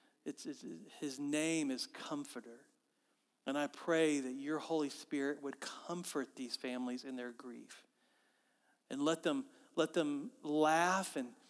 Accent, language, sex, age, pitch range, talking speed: American, English, male, 40-59, 135-160 Hz, 140 wpm